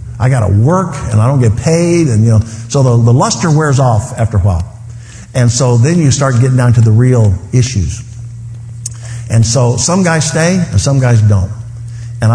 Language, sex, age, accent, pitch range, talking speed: English, male, 50-69, American, 105-120 Hz, 205 wpm